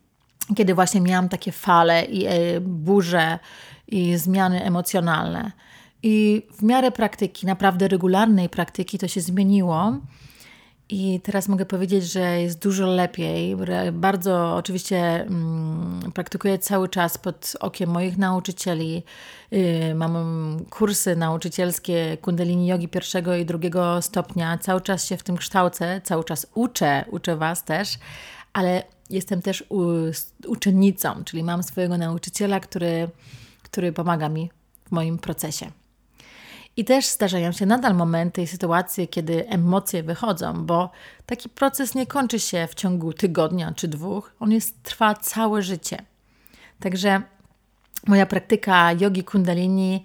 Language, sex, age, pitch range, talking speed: Polish, female, 30-49, 170-195 Hz, 125 wpm